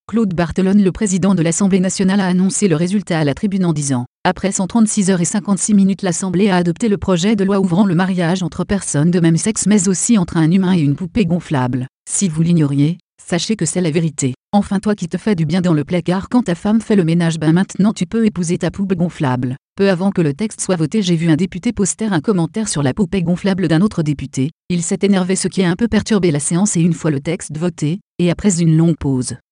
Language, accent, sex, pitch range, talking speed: French, French, female, 165-200 Hz, 250 wpm